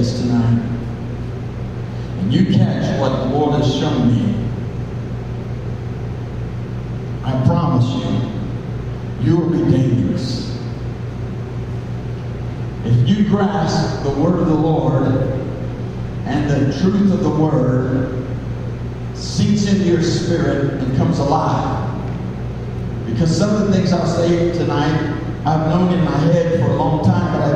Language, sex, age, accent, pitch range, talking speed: English, male, 60-79, American, 125-180 Hz, 125 wpm